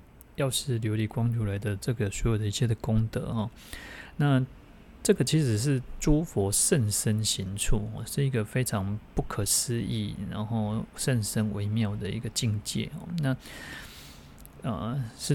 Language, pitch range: Chinese, 105-125 Hz